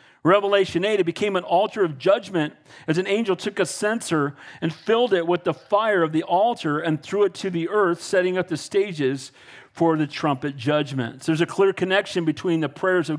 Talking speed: 205 wpm